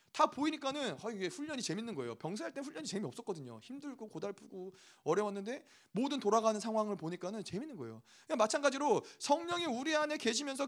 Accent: native